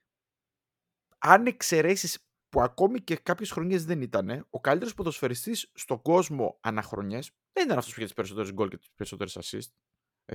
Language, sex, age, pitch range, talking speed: Greek, male, 30-49, 110-175 Hz, 160 wpm